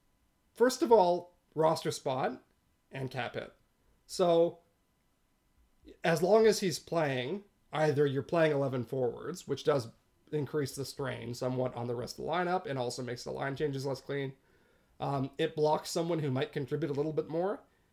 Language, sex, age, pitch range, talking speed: English, male, 40-59, 130-175 Hz, 165 wpm